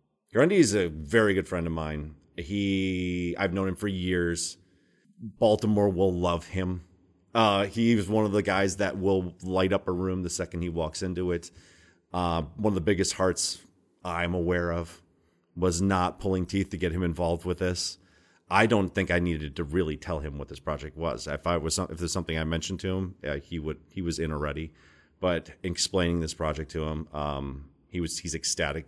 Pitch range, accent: 80-95 Hz, American